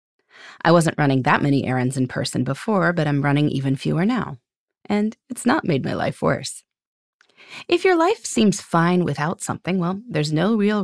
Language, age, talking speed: English, 30-49, 185 wpm